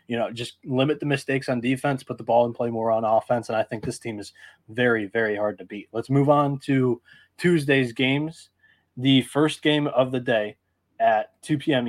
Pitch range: 120-140 Hz